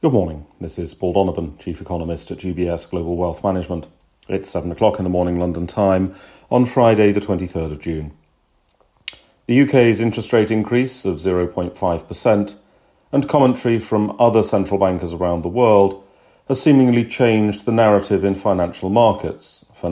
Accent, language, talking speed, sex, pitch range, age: British, English, 155 wpm, male, 95-115 Hz, 40-59